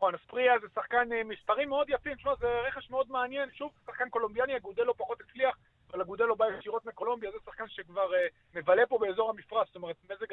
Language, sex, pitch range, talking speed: Hebrew, male, 180-240 Hz, 210 wpm